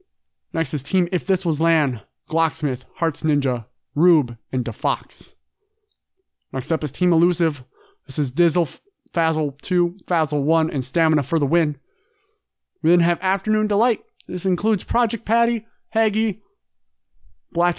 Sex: male